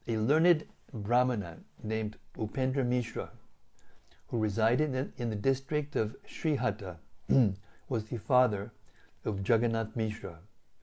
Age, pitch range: 60-79, 105-125 Hz